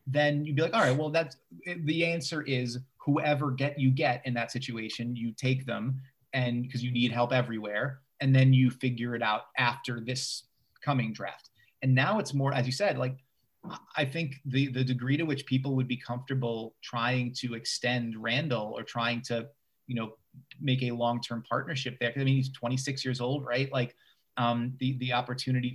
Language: English